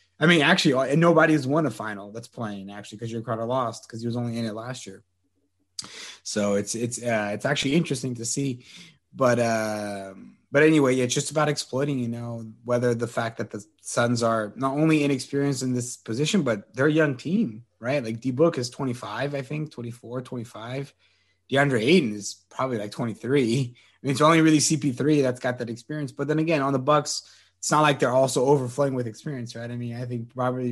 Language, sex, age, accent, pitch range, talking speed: English, male, 20-39, American, 115-155 Hz, 205 wpm